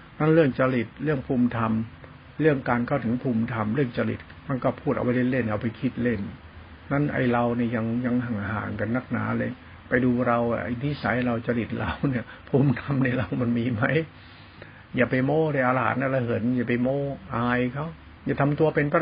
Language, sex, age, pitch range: Thai, male, 60-79, 120-160 Hz